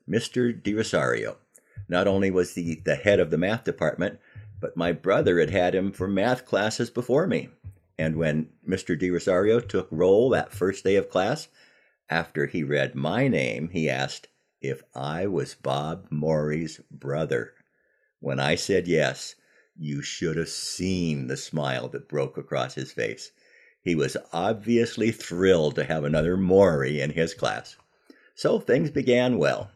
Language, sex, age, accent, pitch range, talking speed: English, male, 50-69, American, 80-105 Hz, 160 wpm